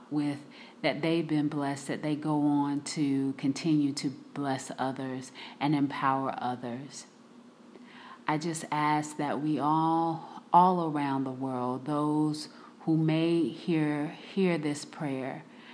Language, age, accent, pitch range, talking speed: English, 30-49, American, 140-160 Hz, 130 wpm